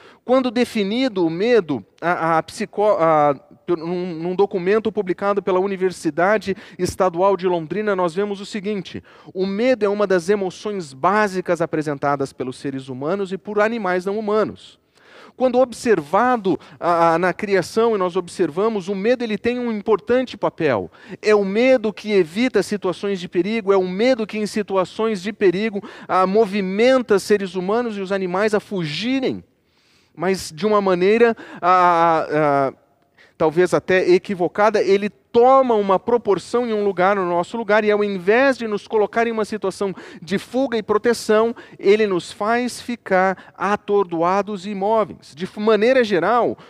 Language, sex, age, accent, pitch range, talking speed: Portuguese, male, 40-59, Brazilian, 180-220 Hz, 155 wpm